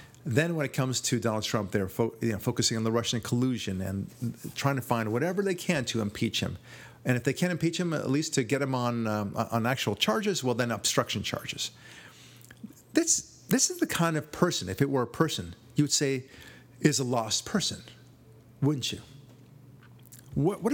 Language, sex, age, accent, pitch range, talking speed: English, male, 40-59, American, 115-150 Hz, 200 wpm